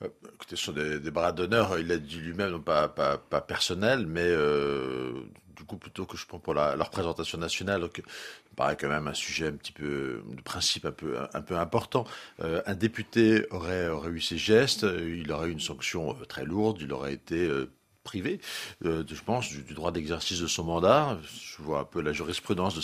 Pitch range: 75-95 Hz